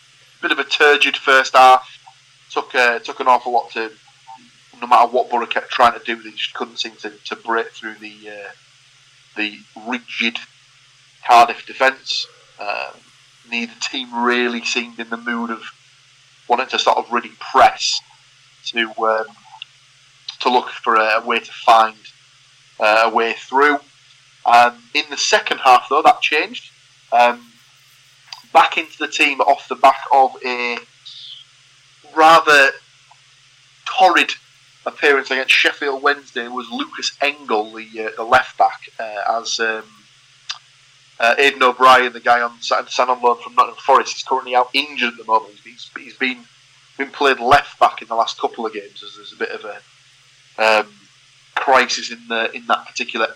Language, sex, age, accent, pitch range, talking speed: English, male, 30-49, British, 115-135 Hz, 165 wpm